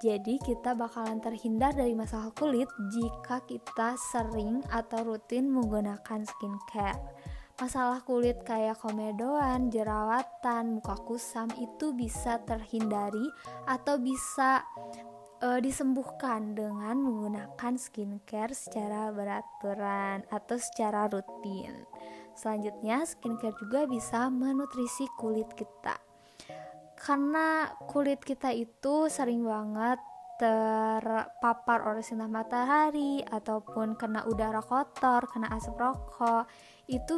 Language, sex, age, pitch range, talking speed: Indonesian, female, 20-39, 220-260 Hz, 100 wpm